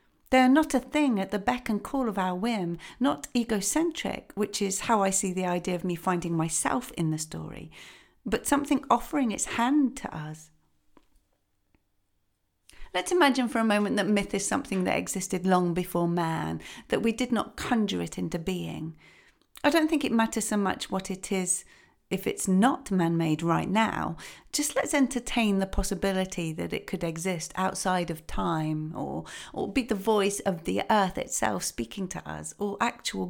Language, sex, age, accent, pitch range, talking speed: English, female, 40-59, British, 175-245 Hz, 180 wpm